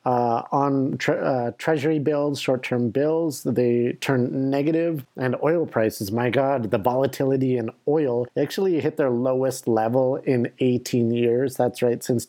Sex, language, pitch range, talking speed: male, English, 115-135 Hz, 150 wpm